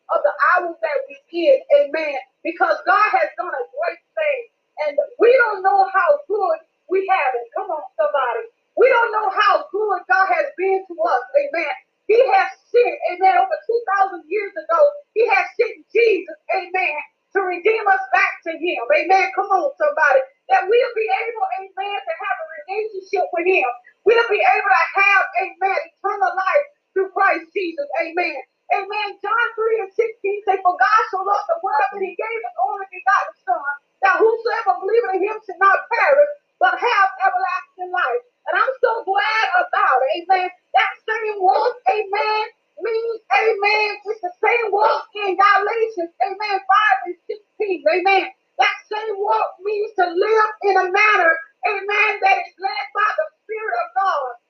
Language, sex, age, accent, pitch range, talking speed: English, female, 30-49, American, 340-420 Hz, 175 wpm